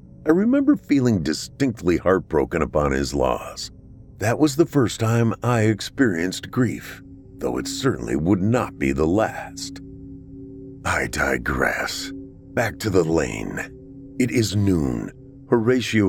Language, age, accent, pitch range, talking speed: English, 50-69, American, 85-120 Hz, 125 wpm